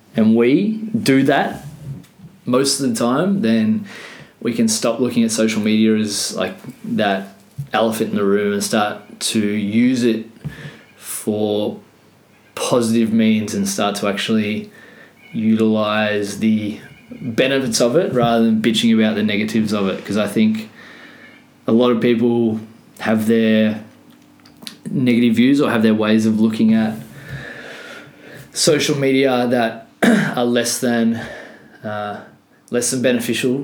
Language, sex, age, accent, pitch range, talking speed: English, male, 20-39, Australian, 110-130 Hz, 135 wpm